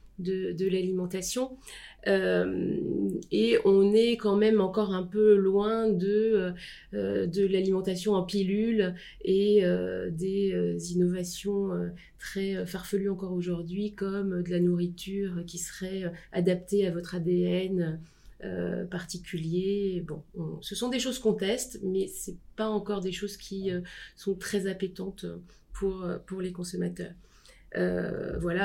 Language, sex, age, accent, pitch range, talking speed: French, female, 30-49, French, 180-200 Hz, 140 wpm